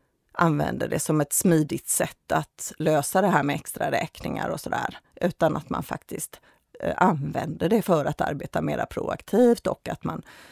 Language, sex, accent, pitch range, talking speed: Swedish, female, native, 160-210 Hz, 165 wpm